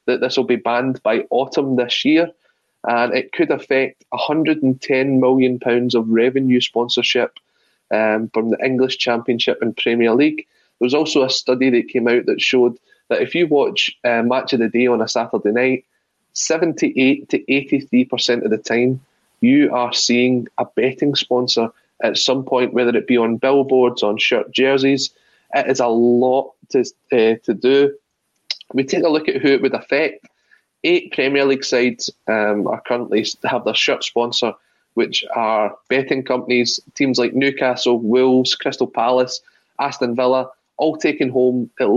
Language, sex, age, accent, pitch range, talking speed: English, male, 20-39, British, 120-140 Hz, 170 wpm